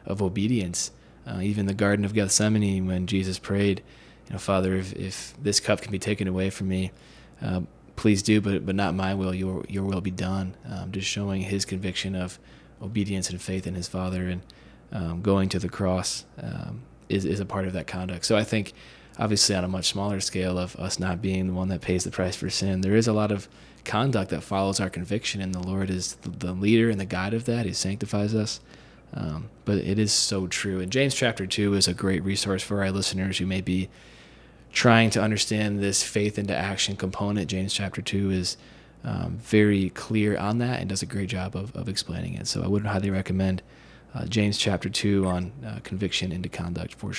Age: 20-39